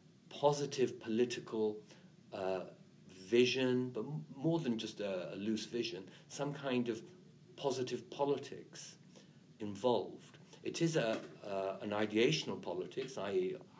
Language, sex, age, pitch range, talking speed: English, male, 50-69, 105-150 Hz, 105 wpm